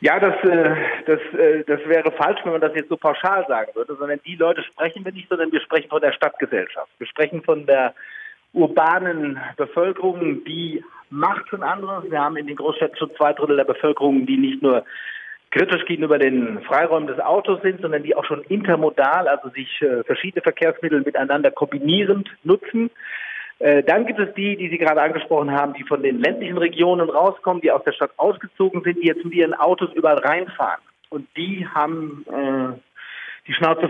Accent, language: German, German